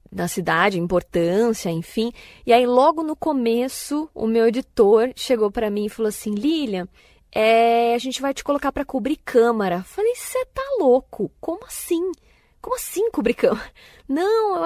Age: 20-39